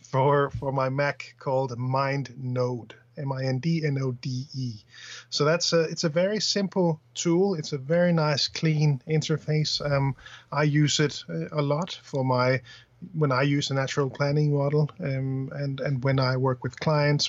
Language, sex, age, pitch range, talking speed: English, male, 30-49, 130-150 Hz, 180 wpm